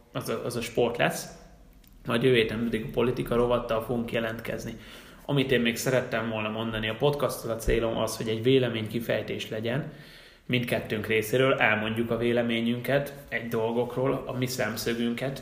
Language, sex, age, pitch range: Hungarian, male, 20-39, 115-130 Hz